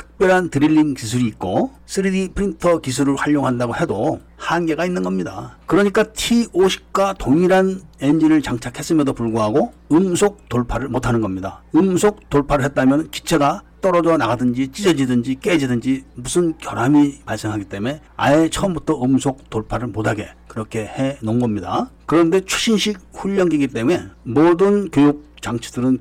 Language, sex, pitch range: Korean, male, 120-175 Hz